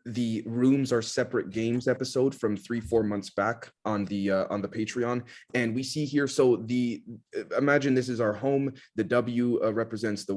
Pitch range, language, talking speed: 105-125 Hz, English, 190 wpm